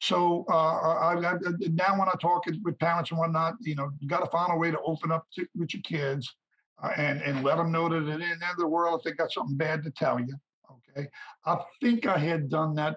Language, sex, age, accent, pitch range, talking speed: English, male, 50-69, American, 155-205 Hz, 255 wpm